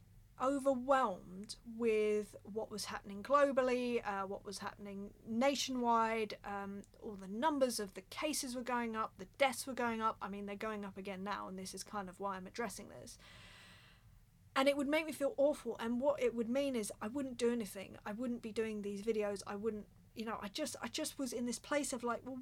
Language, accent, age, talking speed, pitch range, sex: English, British, 30-49, 215 wpm, 200-260 Hz, female